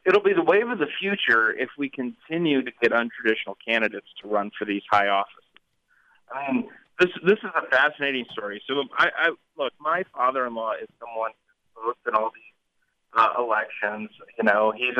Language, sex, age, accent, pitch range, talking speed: English, male, 30-49, American, 115-180 Hz, 185 wpm